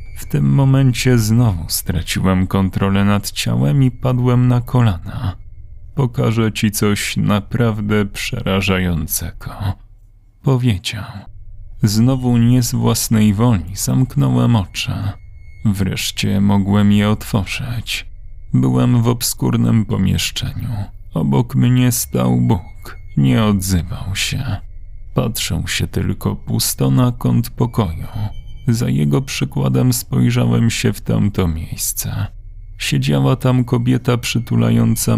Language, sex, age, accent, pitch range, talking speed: Polish, male, 30-49, native, 95-120 Hz, 100 wpm